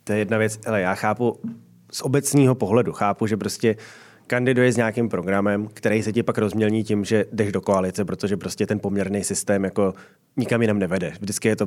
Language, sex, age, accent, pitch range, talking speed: Czech, male, 20-39, native, 100-110 Hz, 200 wpm